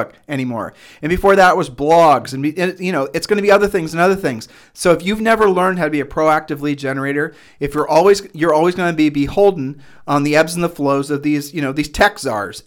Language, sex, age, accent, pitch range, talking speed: English, male, 40-59, American, 140-180 Hz, 240 wpm